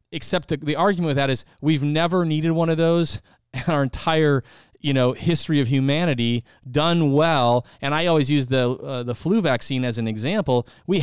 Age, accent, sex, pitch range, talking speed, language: 30-49, American, male, 125-160 Hz, 195 wpm, English